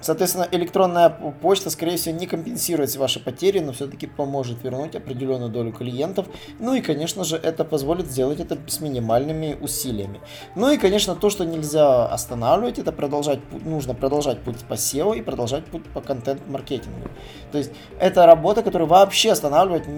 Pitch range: 125-165 Hz